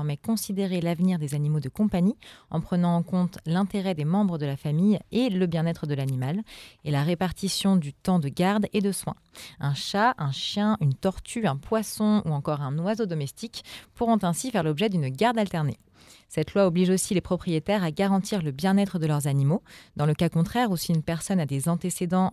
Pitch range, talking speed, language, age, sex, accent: 150-190 Hz, 205 wpm, French, 30-49, female, French